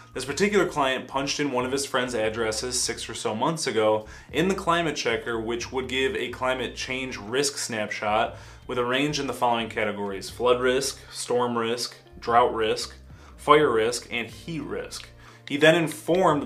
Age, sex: 20-39, male